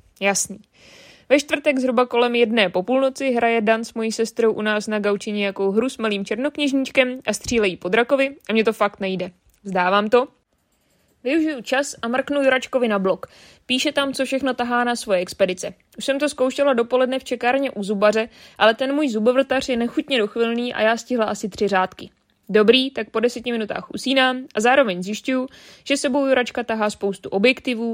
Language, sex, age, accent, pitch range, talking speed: Czech, female, 20-39, native, 205-255 Hz, 180 wpm